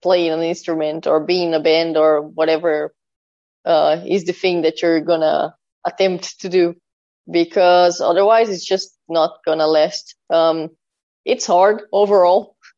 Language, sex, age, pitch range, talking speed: English, female, 20-39, 165-200 Hz, 150 wpm